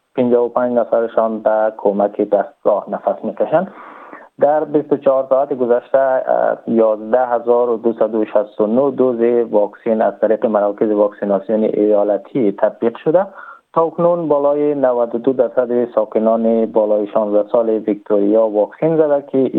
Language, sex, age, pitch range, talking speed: Persian, male, 20-39, 105-130 Hz, 110 wpm